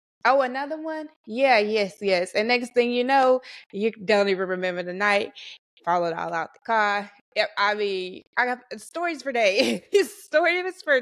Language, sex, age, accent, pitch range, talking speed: English, female, 20-39, American, 185-220 Hz, 170 wpm